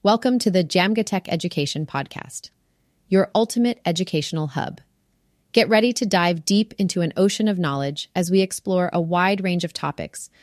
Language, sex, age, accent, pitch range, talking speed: English, female, 30-49, American, 170-200 Hz, 165 wpm